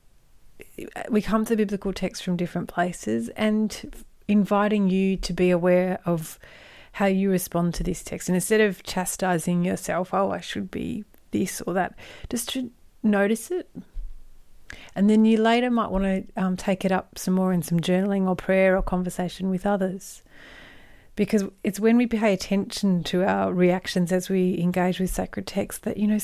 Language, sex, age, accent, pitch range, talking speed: English, female, 30-49, Australian, 180-210 Hz, 175 wpm